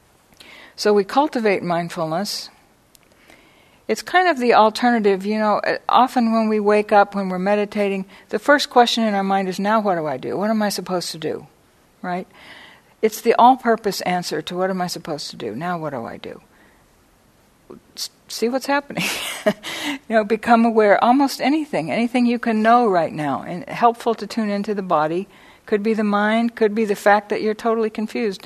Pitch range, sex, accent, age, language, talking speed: 185-225 Hz, female, American, 60-79, English, 185 wpm